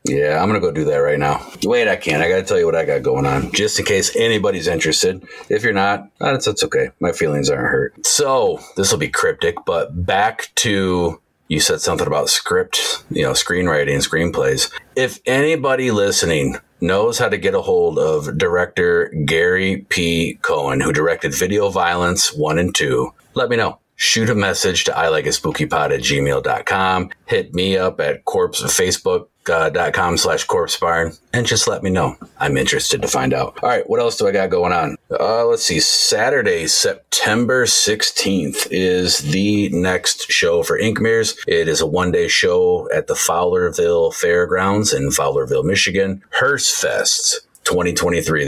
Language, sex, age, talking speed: English, male, 40-59, 180 wpm